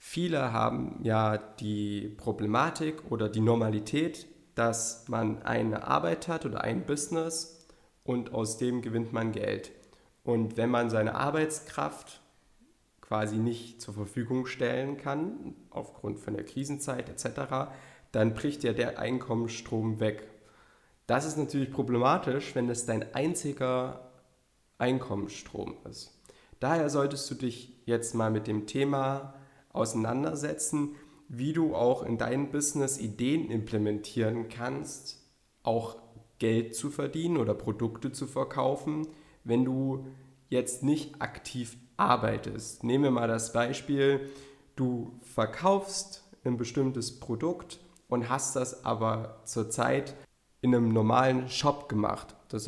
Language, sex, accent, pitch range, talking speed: German, male, German, 115-140 Hz, 125 wpm